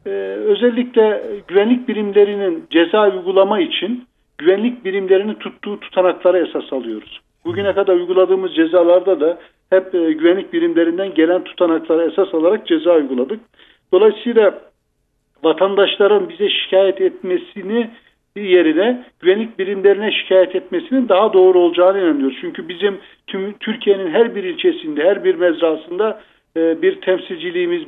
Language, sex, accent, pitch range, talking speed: Turkish, male, native, 175-240 Hz, 120 wpm